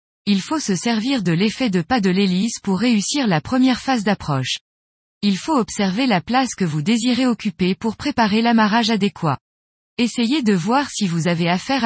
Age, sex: 20-39, female